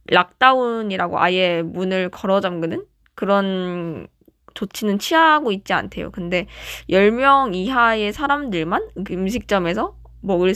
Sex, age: female, 20-39